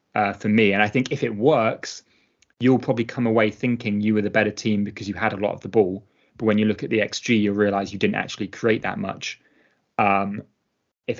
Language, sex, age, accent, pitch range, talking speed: English, male, 20-39, British, 100-115 Hz, 235 wpm